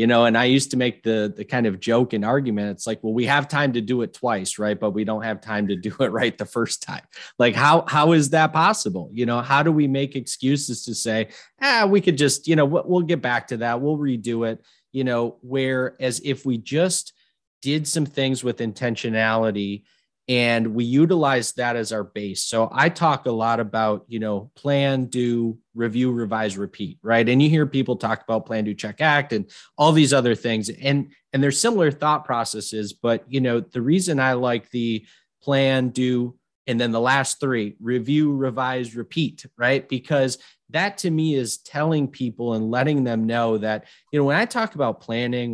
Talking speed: 210 wpm